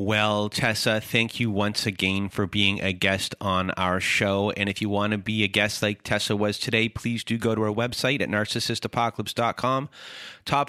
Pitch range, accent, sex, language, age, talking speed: 95-115 Hz, American, male, English, 30-49, 190 wpm